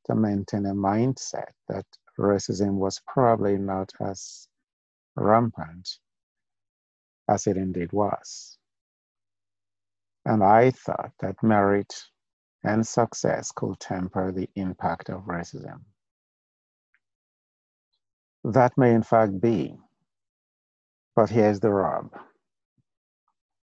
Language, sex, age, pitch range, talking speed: English, male, 50-69, 95-115 Hz, 90 wpm